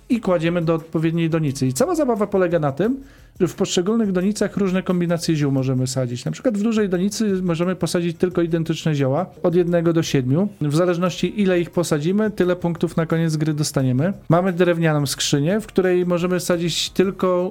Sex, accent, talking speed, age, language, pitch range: male, native, 180 wpm, 40-59, Polish, 145-185 Hz